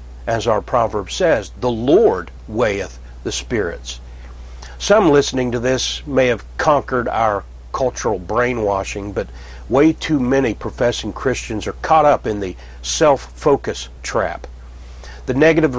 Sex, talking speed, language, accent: male, 130 wpm, English, American